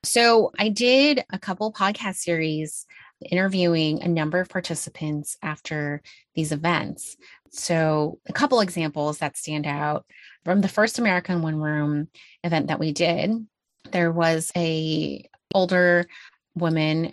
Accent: American